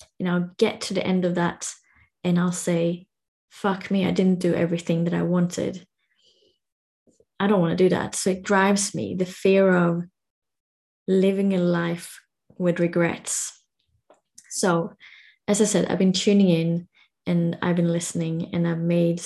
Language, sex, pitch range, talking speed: English, female, 175-205 Hz, 165 wpm